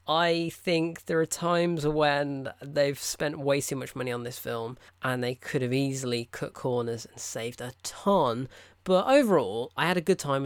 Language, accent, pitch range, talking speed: English, British, 130-170 Hz, 190 wpm